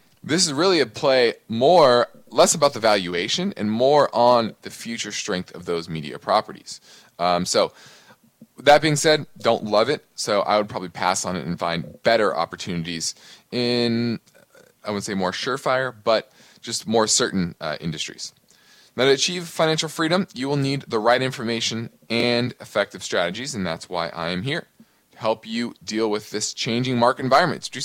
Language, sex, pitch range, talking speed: English, male, 105-140 Hz, 175 wpm